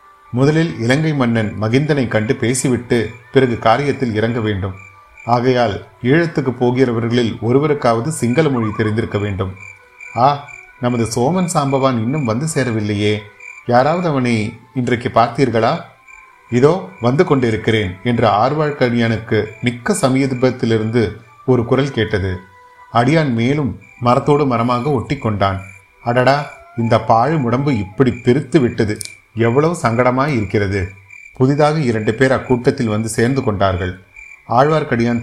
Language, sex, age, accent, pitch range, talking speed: Tamil, male, 30-49, native, 110-135 Hz, 105 wpm